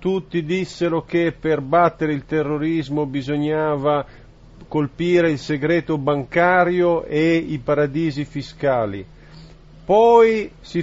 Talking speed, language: 100 wpm, Italian